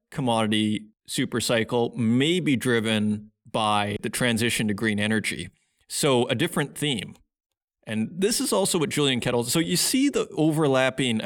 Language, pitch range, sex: English, 110-145 Hz, male